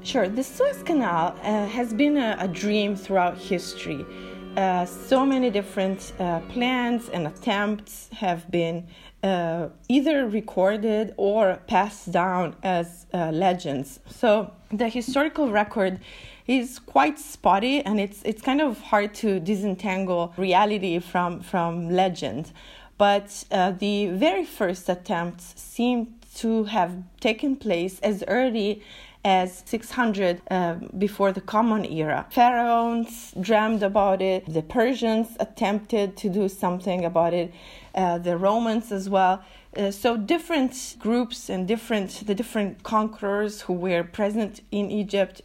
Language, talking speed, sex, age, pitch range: English, 135 wpm, female, 30-49, 180-225 Hz